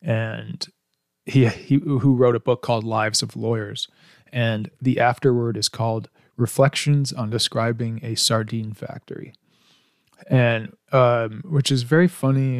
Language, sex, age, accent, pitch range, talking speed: English, male, 20-39, American, 115-135 Hz, 135 wpm